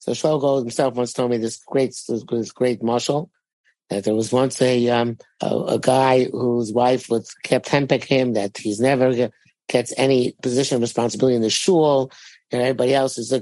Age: 50-69